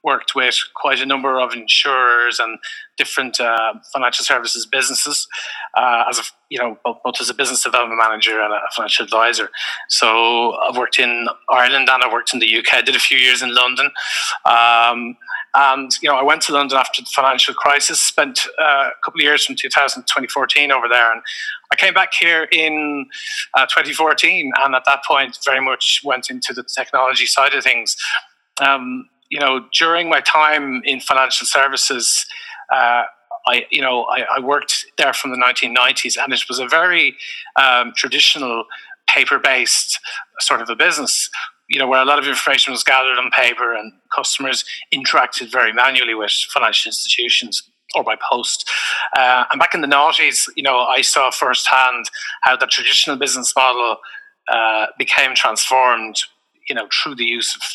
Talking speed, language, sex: 180 wpm, English, male